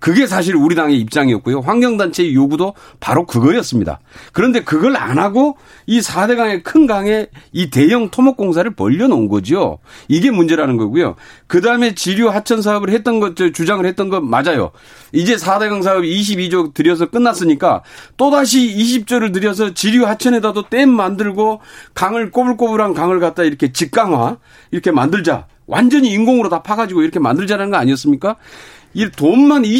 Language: Korean